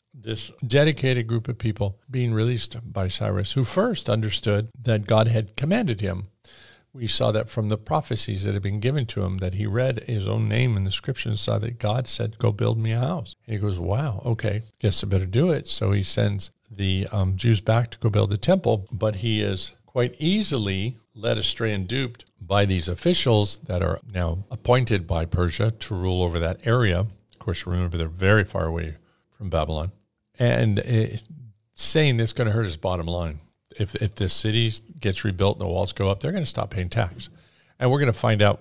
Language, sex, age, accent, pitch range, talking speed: English, male, 50-69, American, 95-115 Hz, 210 wpm